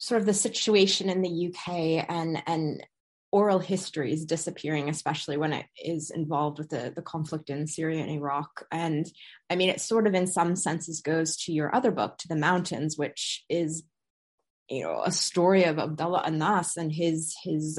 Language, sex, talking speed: English, female, 185 wpm